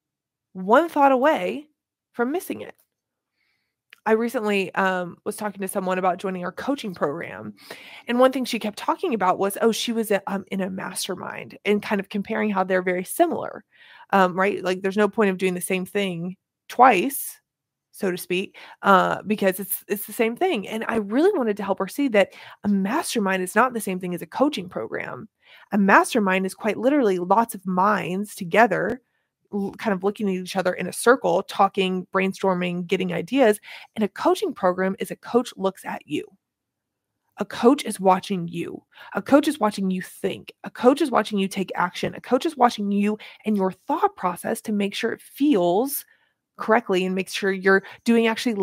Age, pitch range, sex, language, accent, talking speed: 20-39, 190-230 Hz, female, English, American, 190 wpm